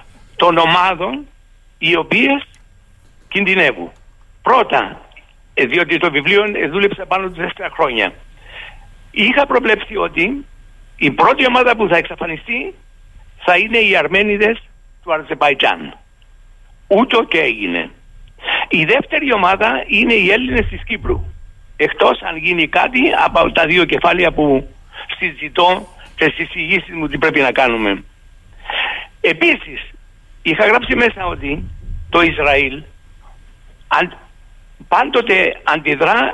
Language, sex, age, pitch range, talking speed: Greek, male, 60-79, 140-220 Hz, 110 wpm